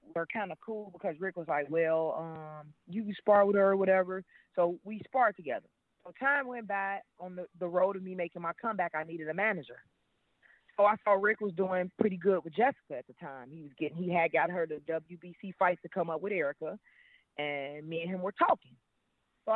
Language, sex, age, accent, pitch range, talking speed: English, female, 30-49, American, 160-210 Hz, 225 wpm